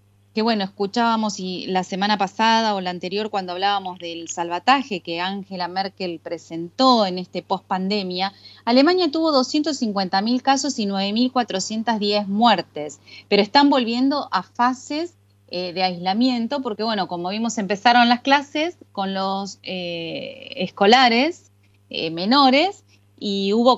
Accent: Argentinian